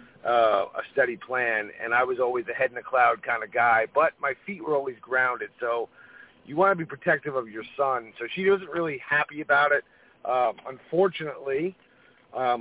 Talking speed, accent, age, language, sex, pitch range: 195 wpm, American, 40-59, English, male, 120-160 Hz